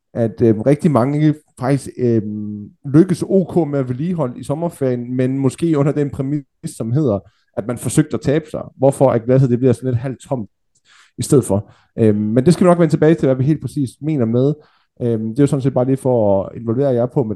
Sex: male